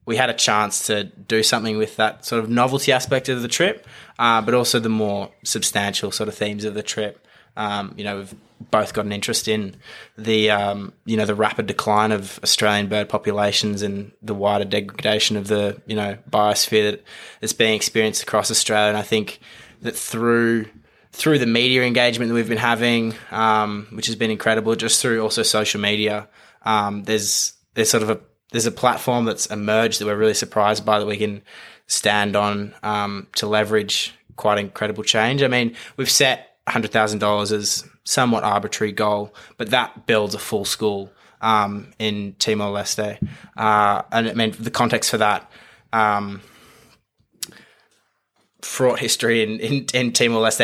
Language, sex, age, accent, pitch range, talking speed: English, male, 20-39, Australian, 105-115 Hz, 170 wpm